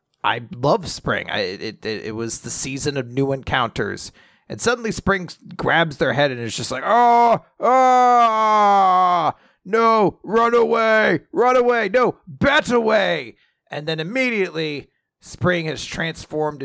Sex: male